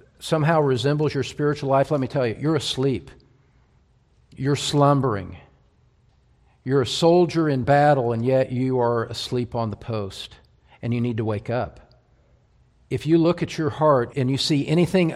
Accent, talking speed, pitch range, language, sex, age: American, 165 wpm, 130-195 Hz, English, male, 50-69